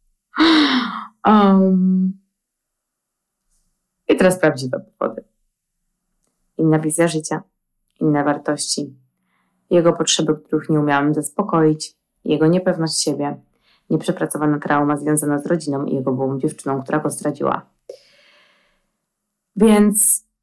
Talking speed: 95 wpm